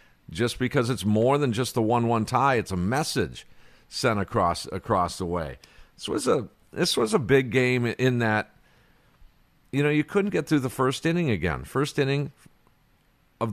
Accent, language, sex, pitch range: American, English, male, 95-130 Hz